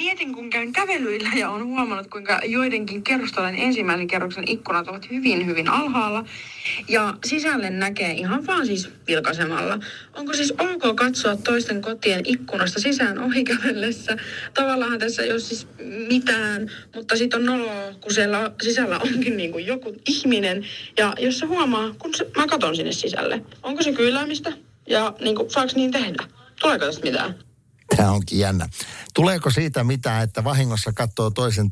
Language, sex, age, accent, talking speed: Finnish, female, 30-49, native, 160 wpm